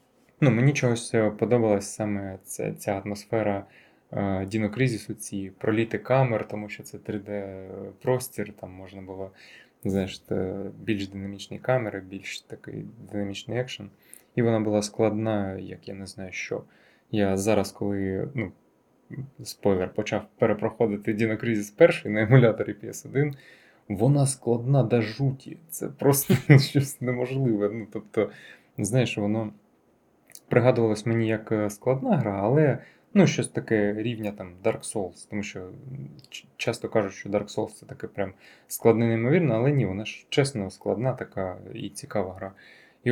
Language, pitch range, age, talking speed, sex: Ukrainian, 100-125 Hz, 20-39, 135 wpm, male